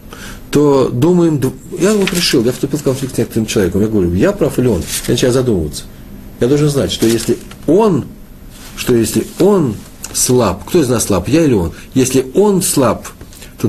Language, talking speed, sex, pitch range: Russian, 185 wpm, male, 90-115 Hz